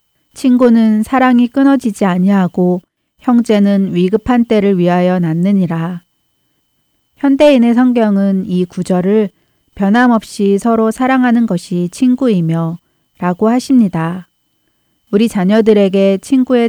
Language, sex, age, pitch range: Korean, female, 40-59, 180-225 Hz